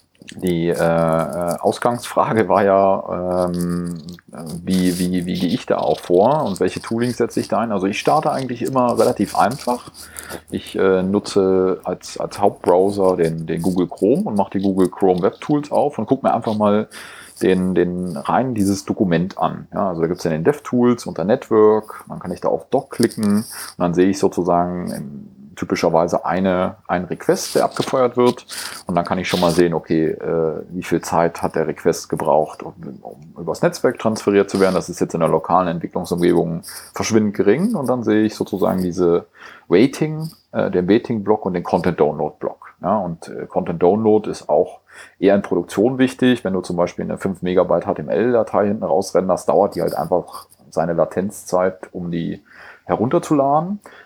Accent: German